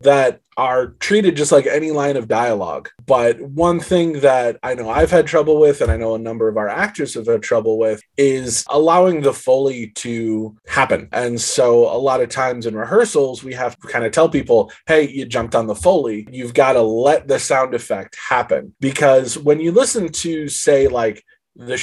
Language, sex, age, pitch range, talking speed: English, male, 20-39, 120-175 Hz, 200 wpm